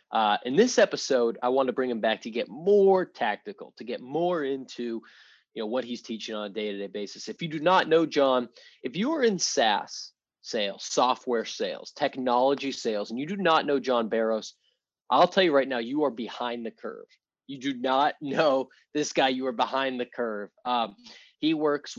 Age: 20-39